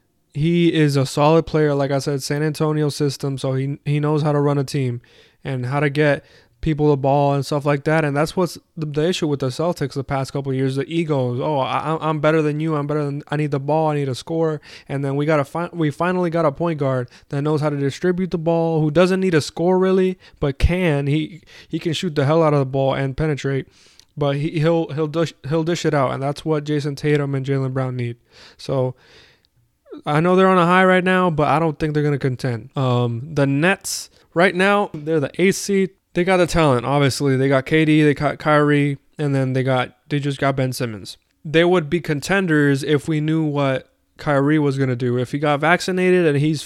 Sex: male